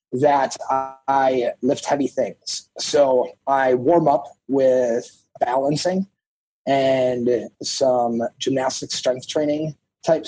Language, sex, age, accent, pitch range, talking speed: English, male, 30-49, American, 115-140 Hz, 100 wpm